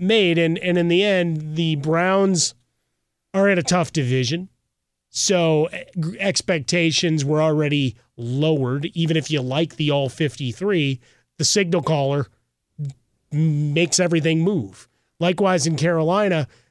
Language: English